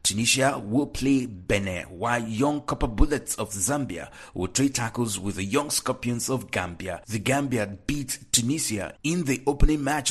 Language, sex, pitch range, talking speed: English, male, 110-145 Hz, 160 wpm